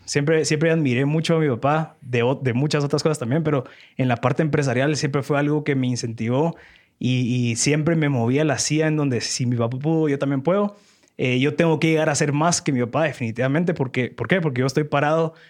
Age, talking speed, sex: 20-39, 235 wpm, male